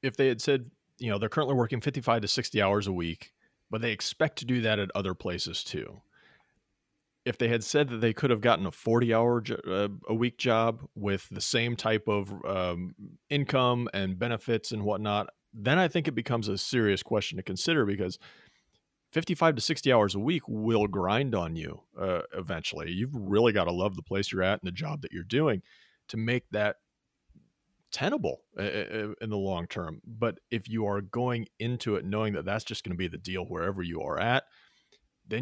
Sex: male